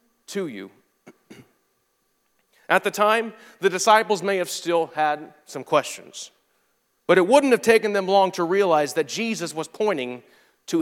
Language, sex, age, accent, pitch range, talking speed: English, male, 40-59, American, 155-220 Hz, 150 wpm